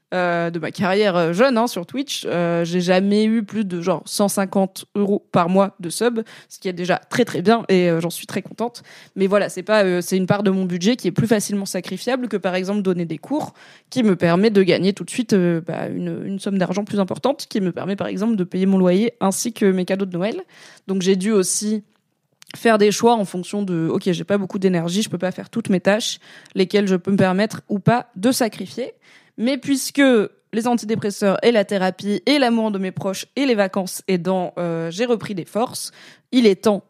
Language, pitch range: French, 180-215 Hz